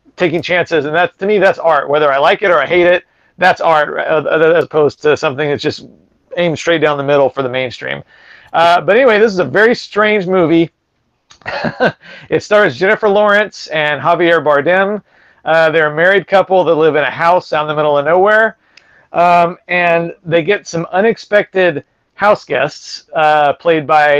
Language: English